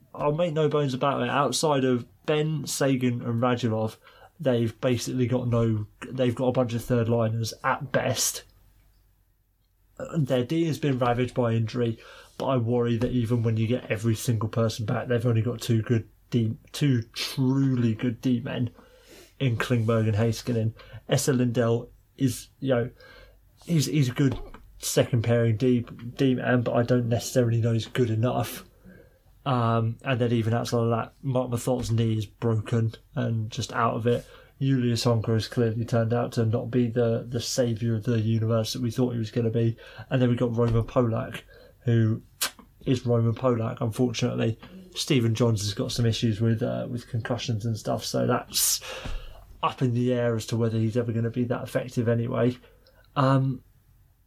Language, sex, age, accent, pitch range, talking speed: English, male, 20-39, British, 115-125 Hz, 180 wpm